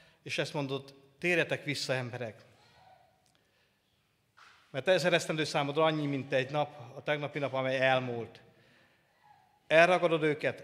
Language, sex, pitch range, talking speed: Hungarian, male, 130-190 Hz, 120 wpm